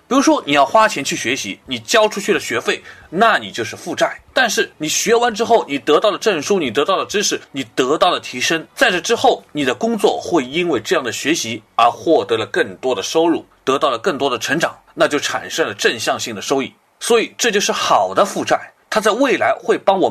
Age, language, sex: 30-49, Chinese, male